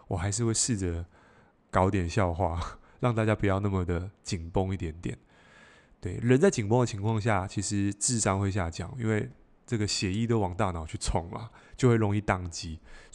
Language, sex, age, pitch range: Chinese, male, 20-39, 95-125 Hz